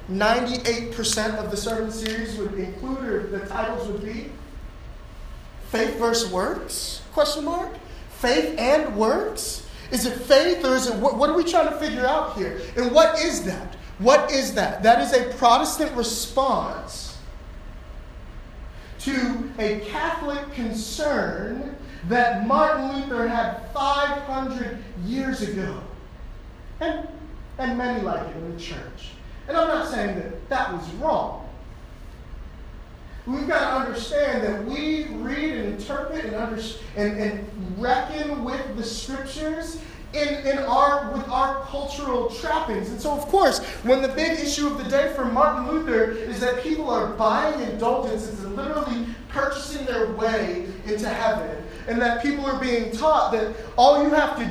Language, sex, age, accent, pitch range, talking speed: English, male, 30-49, American, 220-285 Hz, 150 wpm